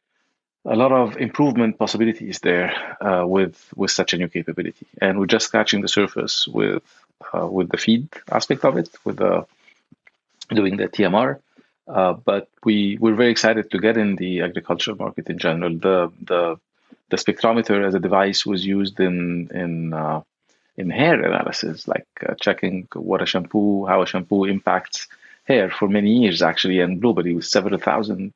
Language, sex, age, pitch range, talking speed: English, male, 40-59, 95-115 Hz, 170 wpm